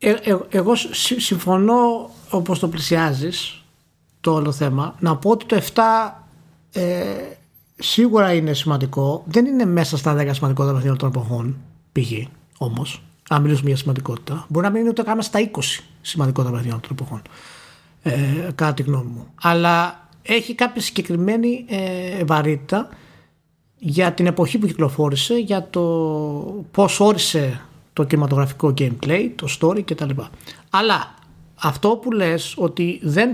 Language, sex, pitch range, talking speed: Greek, male, 140-200 Hz, 140 wpm